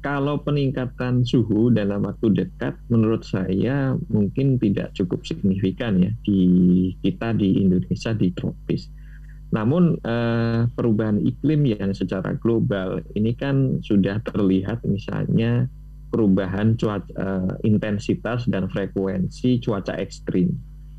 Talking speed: 110 wpm